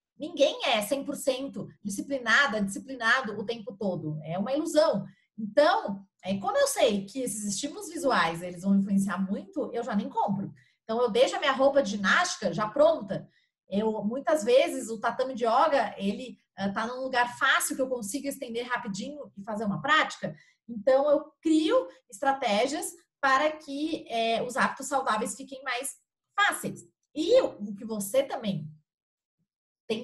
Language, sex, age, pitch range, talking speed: Portuguese, female, 30-49, 205-290 Hz, 145 wpm